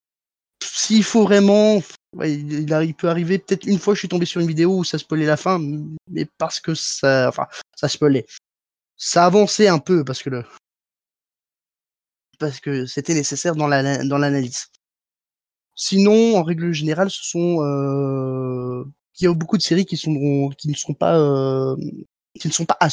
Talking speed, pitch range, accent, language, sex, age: 175 wpm, 140-170 Hz, French, French, male, 20-39